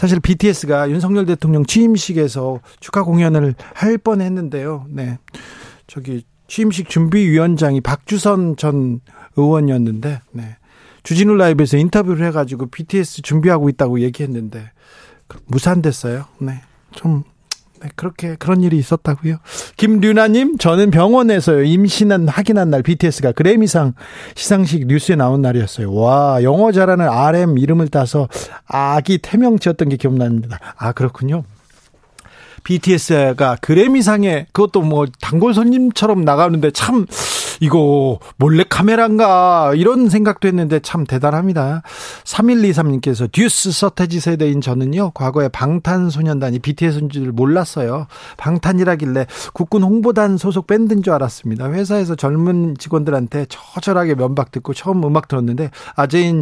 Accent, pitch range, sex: native, 140-185 Hz, male